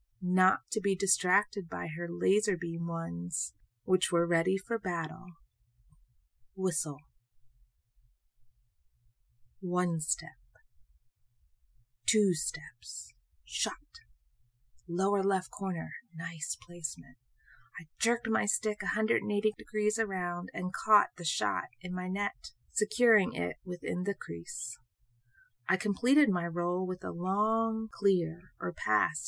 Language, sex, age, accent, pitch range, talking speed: English, female, 30-49, American, 120-200 Hz, 115 wpm